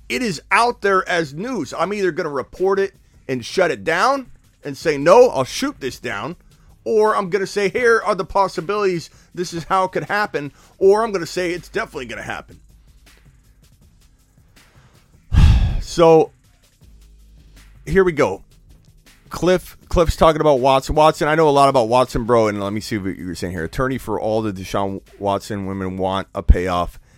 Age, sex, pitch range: 30-49, male, 95-145 Hz